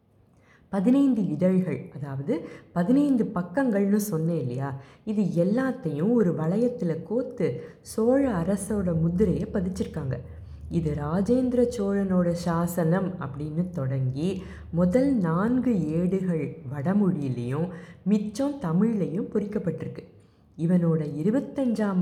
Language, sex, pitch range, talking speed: Tamil, female, 155-215 Hz, 85 wpm